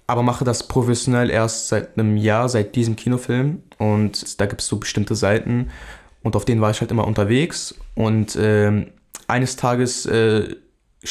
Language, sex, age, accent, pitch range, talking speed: German, male, 20-39, German, 110-130 Hz, 165 wpm